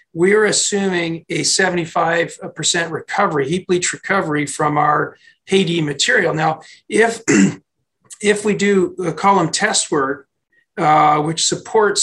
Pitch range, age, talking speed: 150-190 Hz, 40-59, 120 wpm